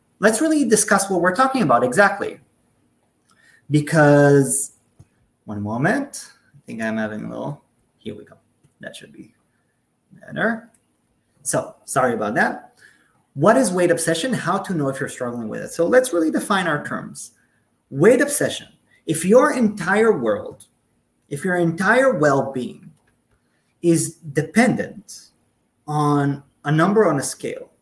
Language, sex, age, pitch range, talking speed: English, male, 30-49, 125-200 Hz, 140 wpm